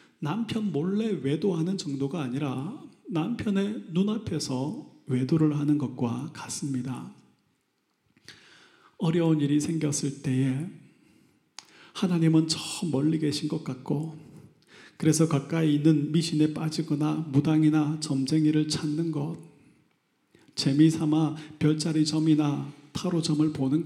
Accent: native